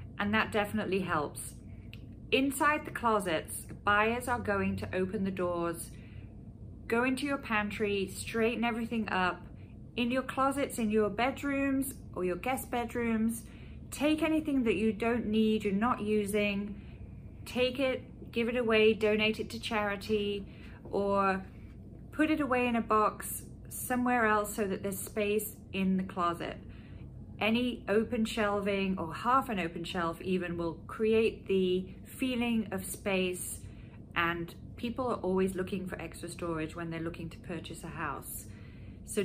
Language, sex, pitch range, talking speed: English, female, 180-235 Hz, 145 wpm